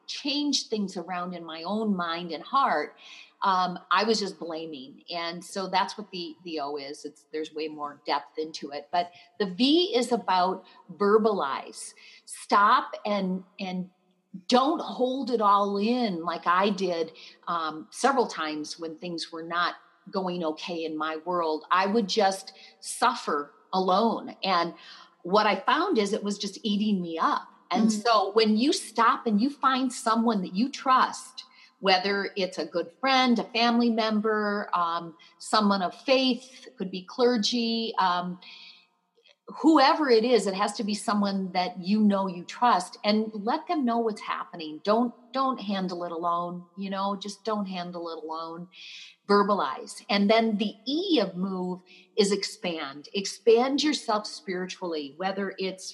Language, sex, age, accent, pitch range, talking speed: English, female, 40-59, American, 175-230 Hz, 160 wpm